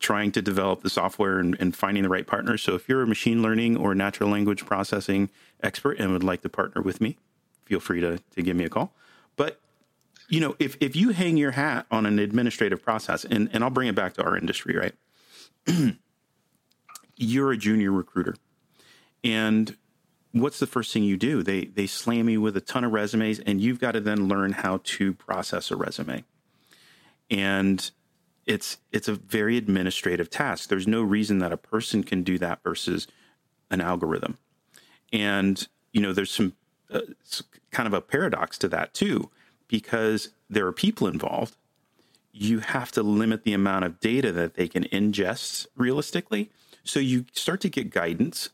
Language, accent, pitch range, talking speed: English, American, 100-120 Hz, 180 wpm